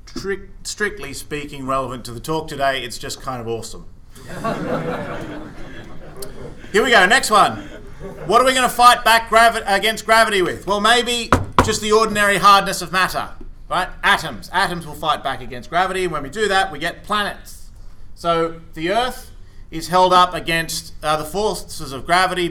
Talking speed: 165 wpm